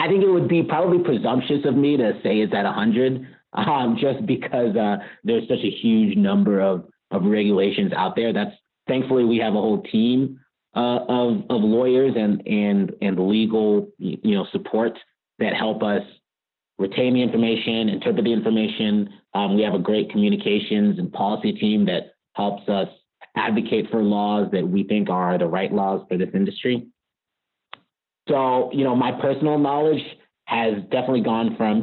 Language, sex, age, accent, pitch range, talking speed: English, male, 30-49, American, 100-135 Hz, 170 wpm